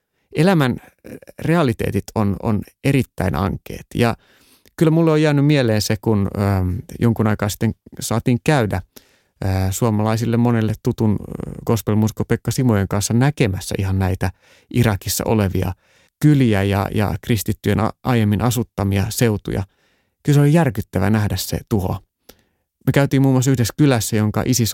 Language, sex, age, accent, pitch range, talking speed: Finnish, male, 30-49, native, 105-135 Hz, 130 wpm